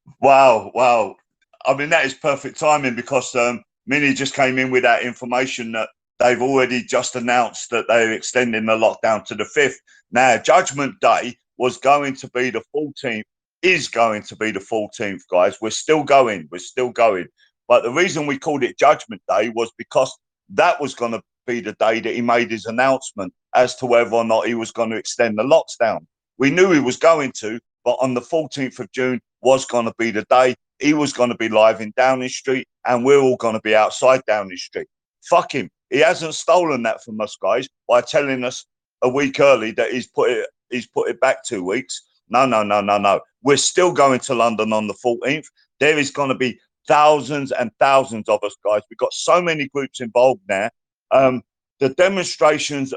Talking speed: 200 wpm